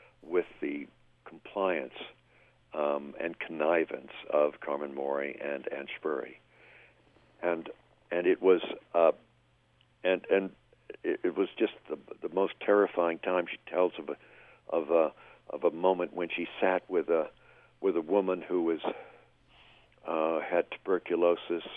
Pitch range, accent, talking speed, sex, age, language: 75-90 Hz, American, 140 wpm, male, 60-79, English